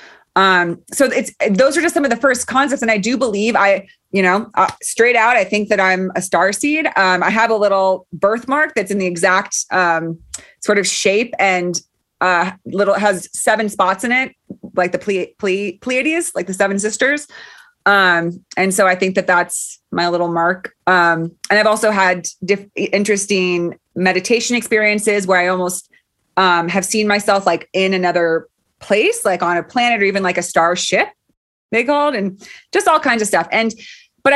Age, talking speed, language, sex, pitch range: 20-39, 185 wpm, English, female, 185-240 Hz